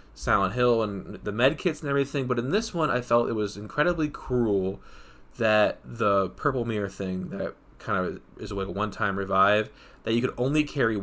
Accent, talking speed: American, 195 wpm